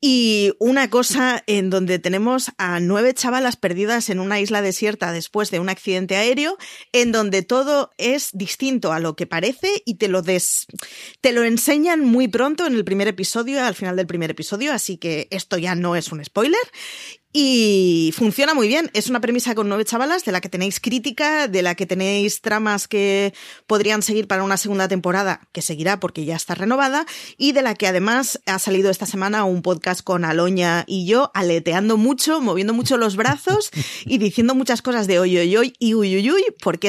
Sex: female